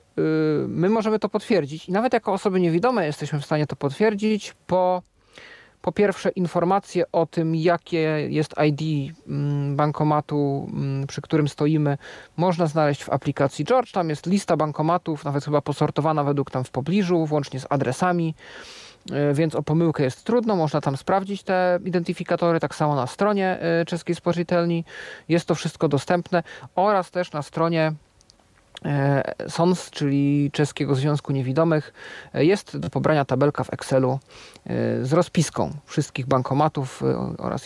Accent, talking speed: native, 135 wpm